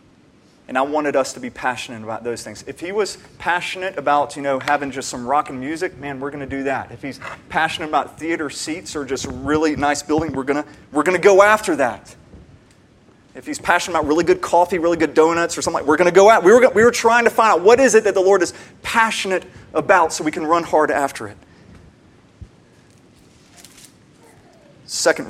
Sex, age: male, 30-49